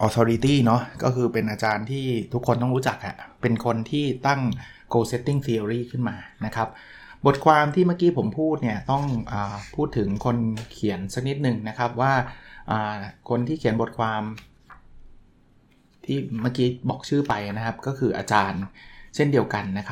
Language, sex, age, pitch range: Thai, male, 20-39, 110-130 Hz